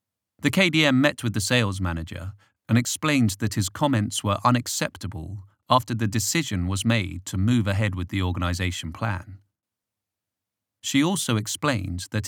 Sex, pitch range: male, 95-120 Hz